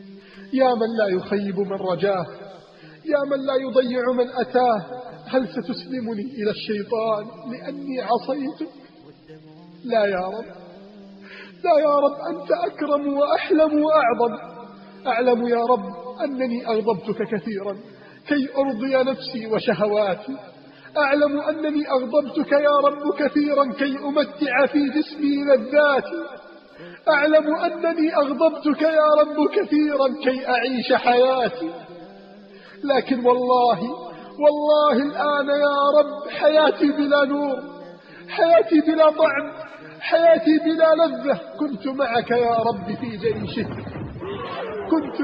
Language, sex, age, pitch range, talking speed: Arabic, male, 40-59, 235-295 Hz, 105 wpm